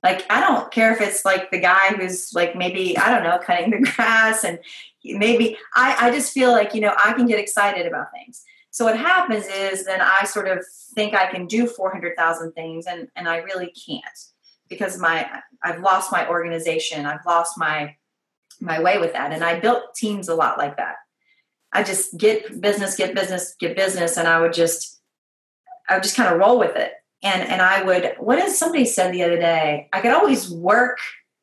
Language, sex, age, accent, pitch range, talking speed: English, female, 30-49, American, 175-230 Hz, 205 wpm